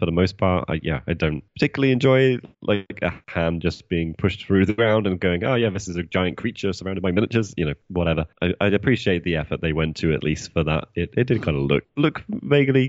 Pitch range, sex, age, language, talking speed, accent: 85-110 Hz, male, 20-39, English, 250 wpm, British